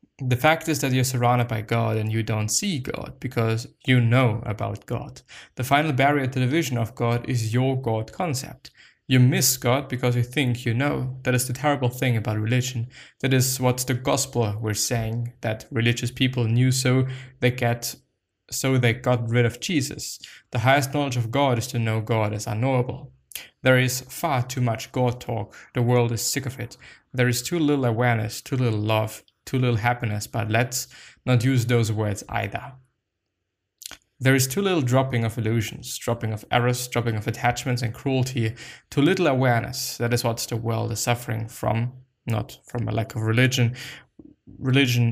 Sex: male